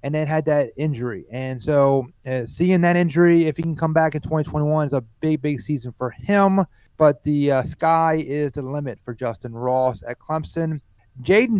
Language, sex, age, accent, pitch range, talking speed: English, male, 30-49, American, 130-165 Hz, 195 wpm